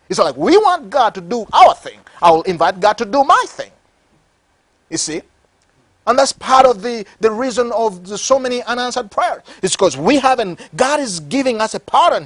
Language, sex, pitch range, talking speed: English, male, 195-285 Hz, 195 wpm